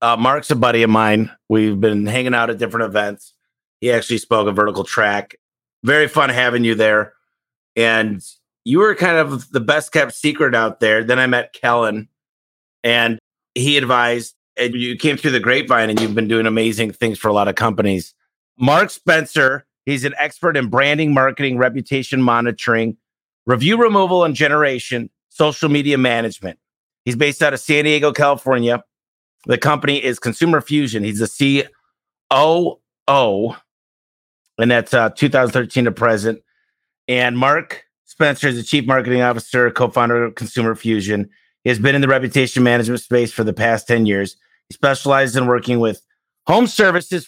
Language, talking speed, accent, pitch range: English, 165 wpm, American, 115-140 Hz